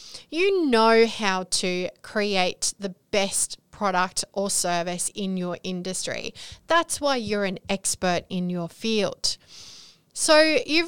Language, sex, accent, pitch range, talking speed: English, female, Australian, 190-275 Hz, 125 wpm